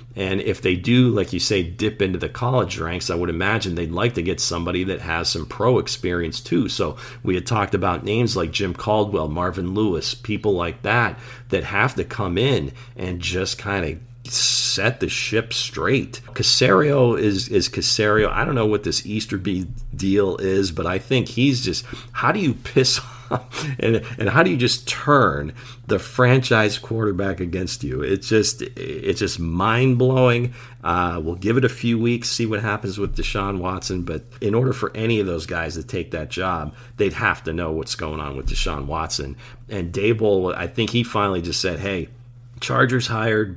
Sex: male